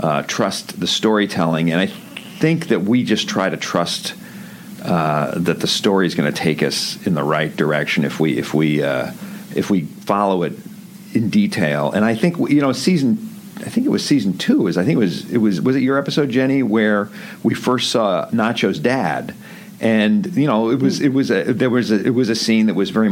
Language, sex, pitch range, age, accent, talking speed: English, male, 90-130 Hz, 50-69, American, 215 wpm